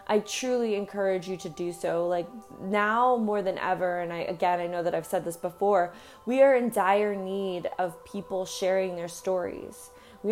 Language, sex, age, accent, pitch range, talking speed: English, female, 20-39, American, 180-205 Hz, 190 wpm